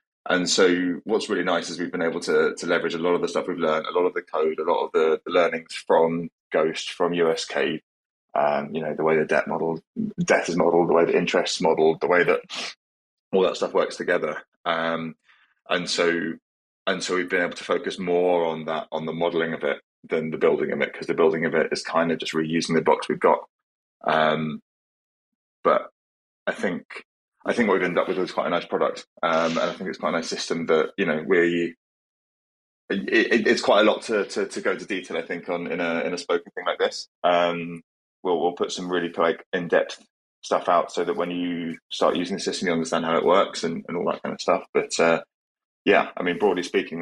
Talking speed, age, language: 235 wpm, 20-39, English